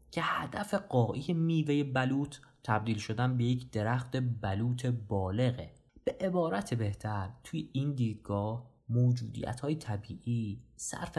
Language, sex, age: Persian, male, 20-39